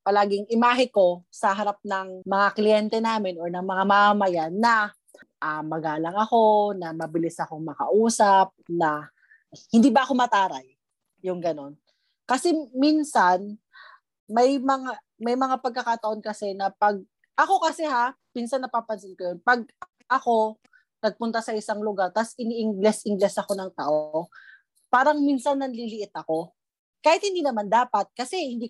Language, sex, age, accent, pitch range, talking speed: Filipino, female, 20-39, native, 190-245 Hz, 140 wpm